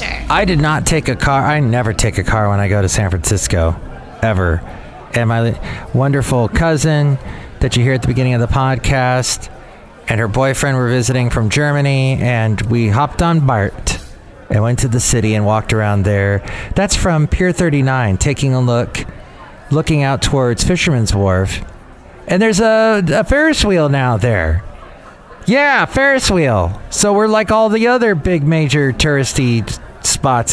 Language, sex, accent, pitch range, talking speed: English, male, American, 105-145 Hz, 170 wpm